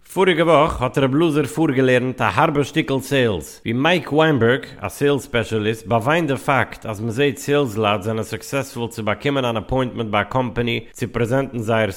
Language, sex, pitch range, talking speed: English, male, 110-145 Hz, 180 wpm